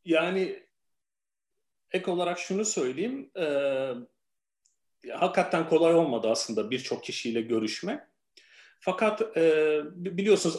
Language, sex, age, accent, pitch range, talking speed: Turkish, male, 40-59, native, 140-195 Hz, 90 wpm